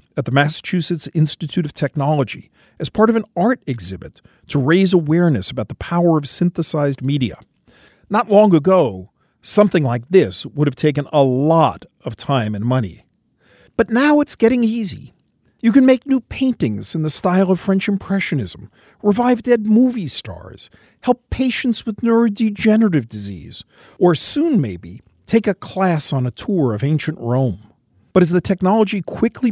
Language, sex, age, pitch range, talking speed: English, male, 50-69, 130-195 Hz, 160 wpm